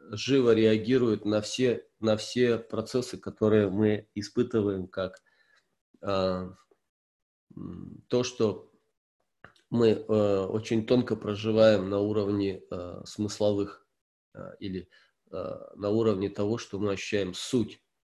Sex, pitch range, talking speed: male, 100-125 Hz, 110 wpm